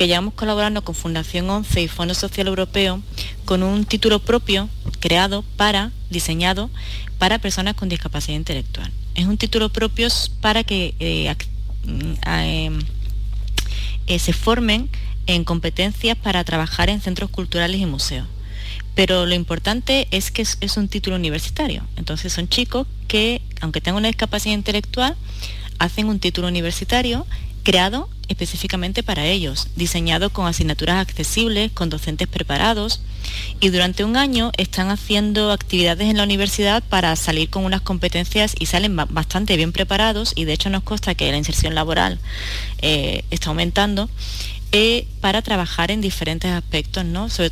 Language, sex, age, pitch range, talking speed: Spanish, female, 30-49, 150-200 Hz, 145 wpm